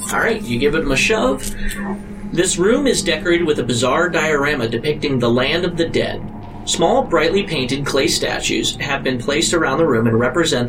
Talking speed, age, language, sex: 190 wpm, 30-49, English, male